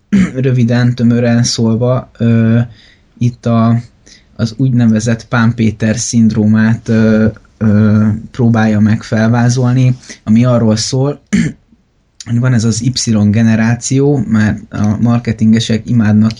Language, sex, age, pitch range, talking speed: Hungarian, male, 20-39, 110-125 Hz, 100 wpm